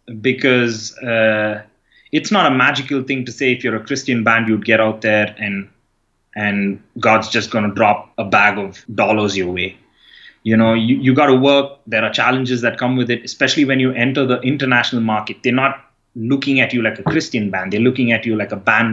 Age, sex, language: 30-49, male, English